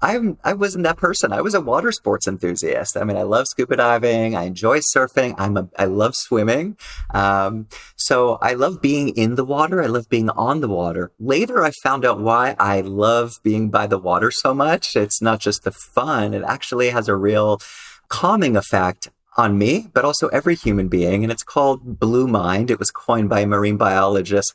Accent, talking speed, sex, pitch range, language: American, 205 wpm, male, 100-130 Hz, English